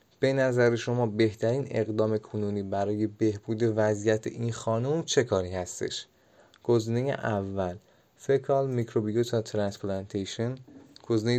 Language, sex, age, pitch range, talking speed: Persian, male, 30-49, 105-125 Hz, 105 wpm